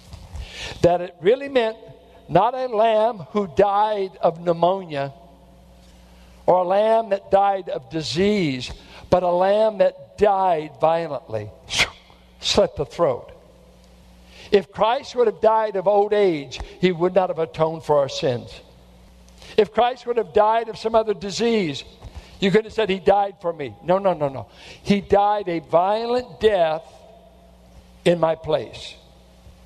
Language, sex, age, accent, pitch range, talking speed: English, male, 60-79, American, 140-205 Hz, 145 wpm